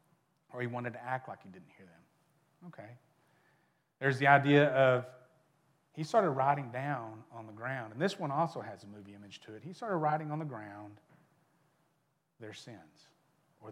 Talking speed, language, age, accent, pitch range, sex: 180 wpm, English, 40-59, American, 125-160 Hz, male